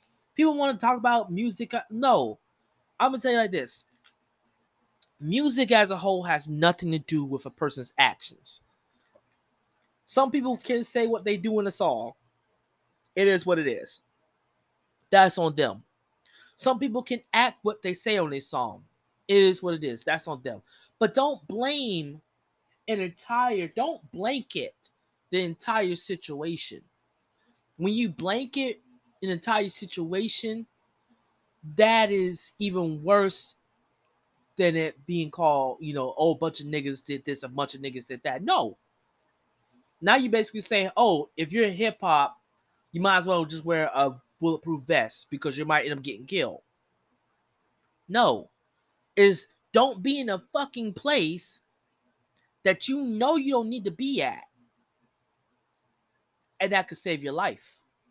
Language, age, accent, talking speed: English, 20-39, American, 155 wpm